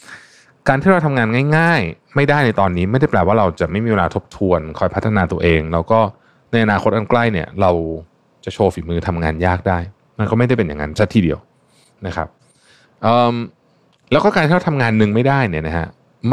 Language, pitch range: Thai, 95-130 Hz